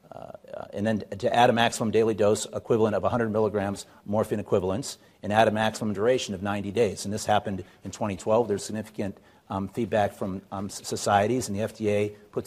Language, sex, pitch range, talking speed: English, male, 100-120 Hz, 190 wpm